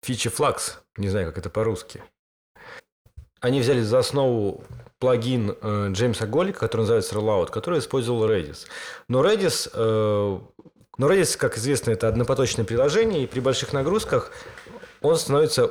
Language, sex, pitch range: Russian, male, 105-155 Hz